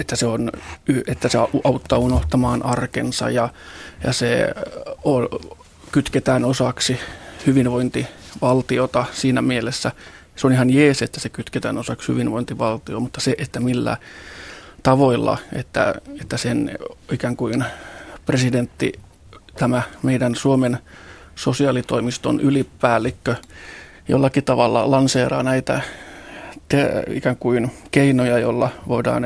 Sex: male